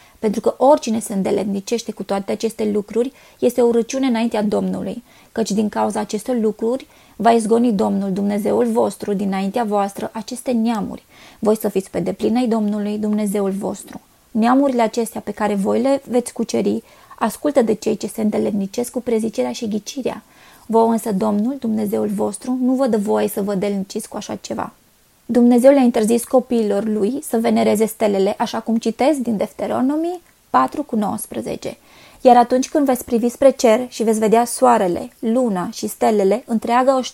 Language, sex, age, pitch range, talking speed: Romanian, female, 20-39, 210-240 Hz, 165 wpm